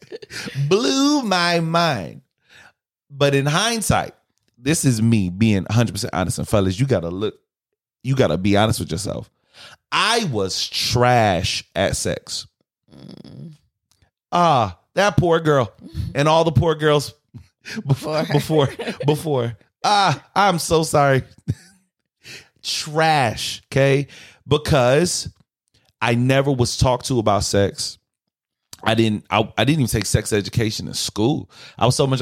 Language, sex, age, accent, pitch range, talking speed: English, male, 30-49, American, 110-155 Hz, 130 wpm